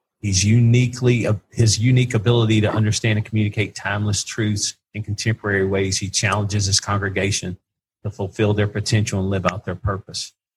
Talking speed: 160 wpm